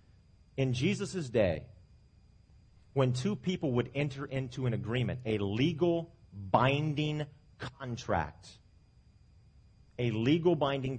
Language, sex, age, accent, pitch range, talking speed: English, male, 40-59, American, 105-140 Hz, 100 wpm